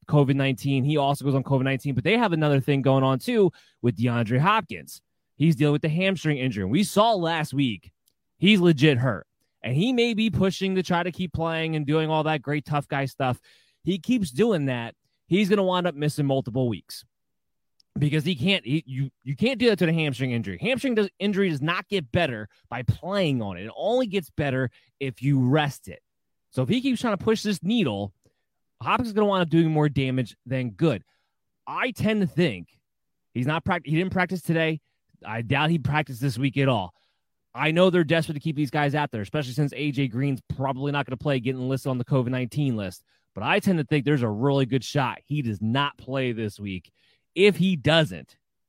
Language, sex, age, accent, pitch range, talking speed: English, male, 20-39, American, 130-165 Hz, 215 wpm